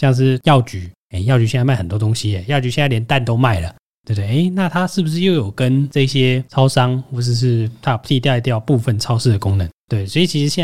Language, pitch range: Chinese, 115-140 Hz